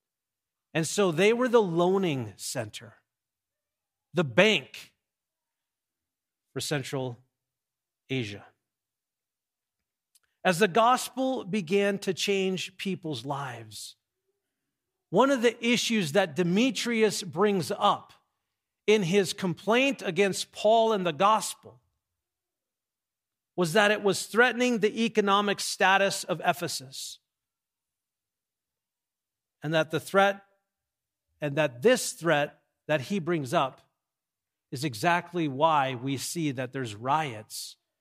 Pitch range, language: 135-205 Hz, English